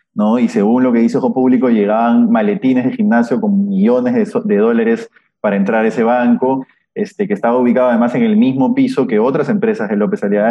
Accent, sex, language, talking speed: Argentinian, male, Spanish, 215 wpm